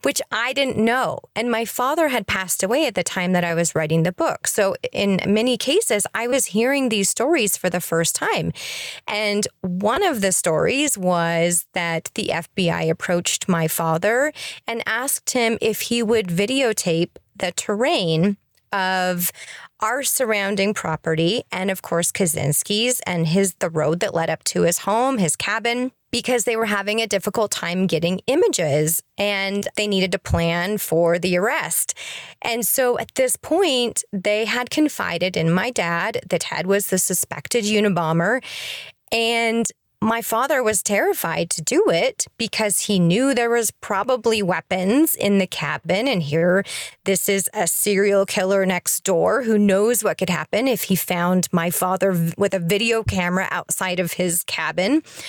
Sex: female